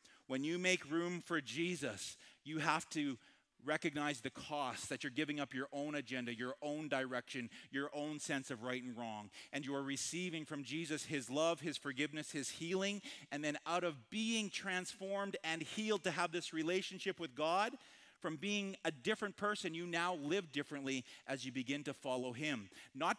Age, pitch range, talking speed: 40-59, 145-180 Hz, 185 wpm